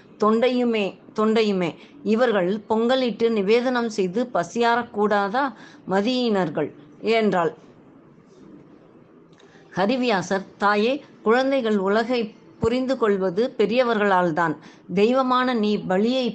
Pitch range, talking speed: 195-240 Hz, 70 wpm